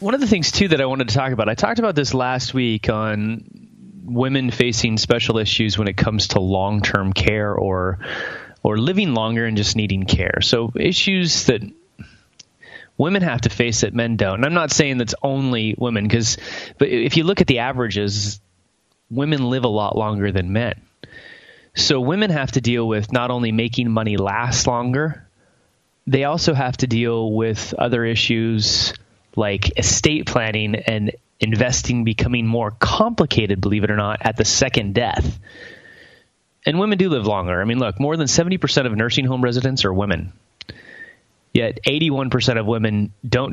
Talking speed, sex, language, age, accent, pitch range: 175 wpm, male, English, 20-39, American, 110-135 Hz